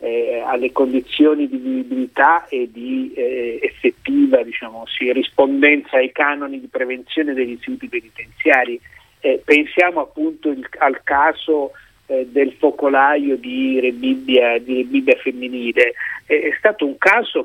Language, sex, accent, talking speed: Italian, male, native, 125 wpm